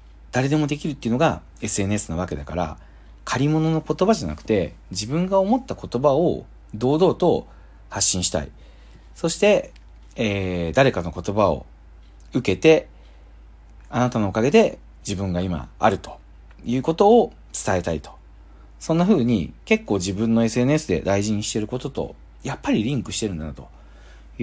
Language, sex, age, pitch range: Japanese, male, 40-59, 75-125 Hz